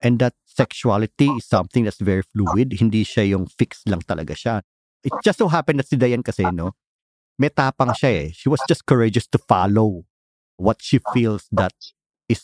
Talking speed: 185 wpm